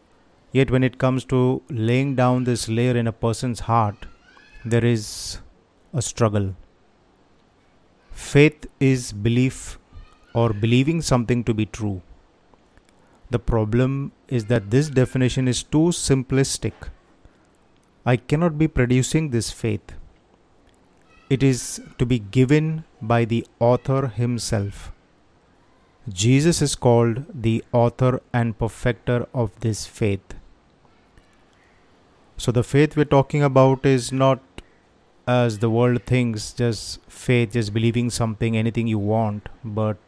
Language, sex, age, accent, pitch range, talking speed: Hindi, male, 30-49, native, 105-130 Hz, 120 wpm